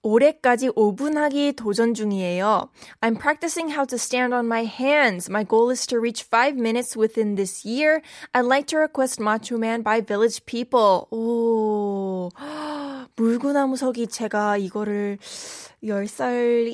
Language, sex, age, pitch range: Korean, female, 20-39, 225-285 Hz